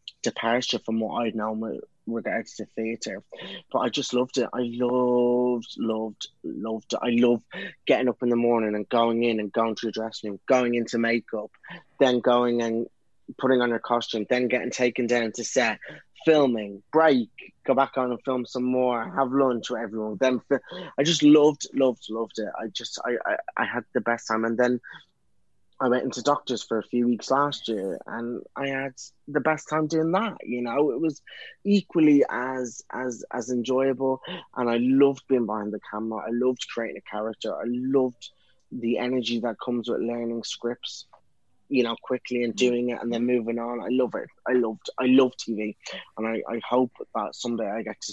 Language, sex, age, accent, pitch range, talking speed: English, male, 20-39, British, 115-130 Hz, 195 wpm